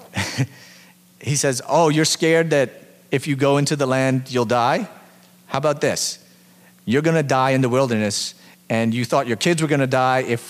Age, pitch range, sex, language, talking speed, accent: 30-49, 110-160 Hz, male, English, 195 wpm, American